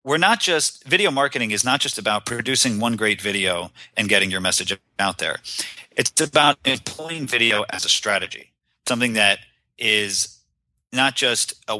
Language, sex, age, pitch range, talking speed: English, male, 40-59, 100-130 Hz, 165 wpm